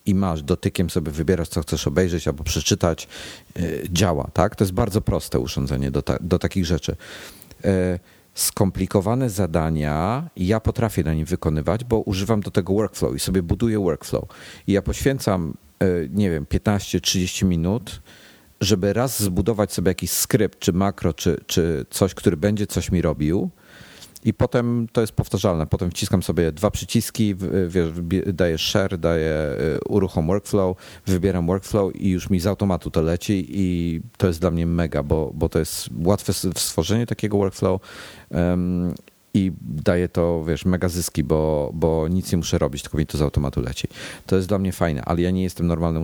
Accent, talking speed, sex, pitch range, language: native, 165 wpm, male, 85-100 Hz, Polish